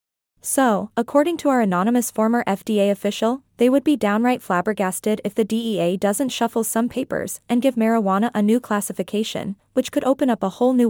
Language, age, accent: English, 20-39, American